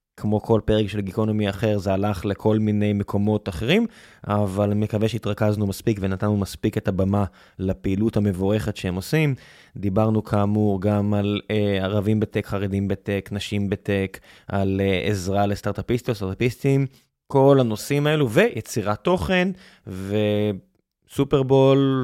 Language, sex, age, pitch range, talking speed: Hebrew, male, 20-39, 105-135 Hz, 115 wpm